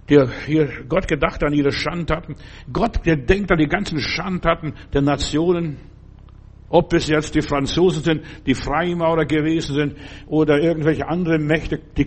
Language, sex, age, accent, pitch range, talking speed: German, male, 60-79, German, 130-160 Hz, 155 wpm